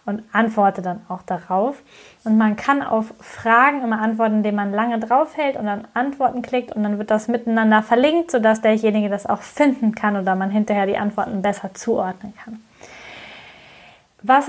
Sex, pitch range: female, 210-245 Hz